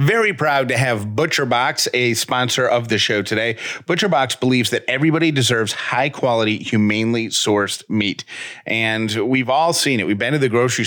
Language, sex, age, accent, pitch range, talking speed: English, male, 30-49, American, 105-130 Hz, 160 wpm